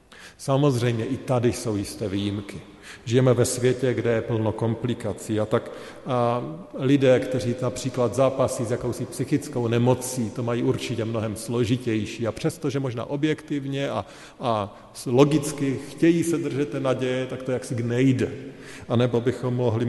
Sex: male